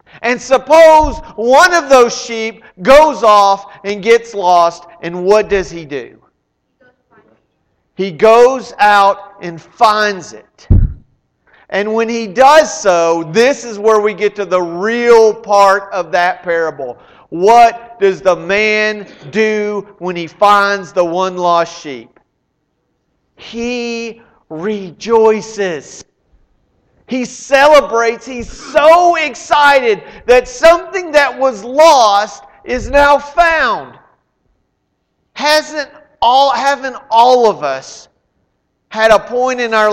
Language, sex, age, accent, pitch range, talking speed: English, male, 40-59, American, 190-250 Hz, 115 wpm